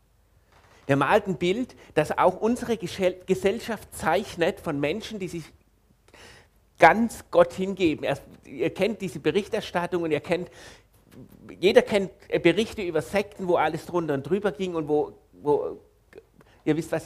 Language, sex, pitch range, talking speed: German, male, 135-205 Hz, 145 wpm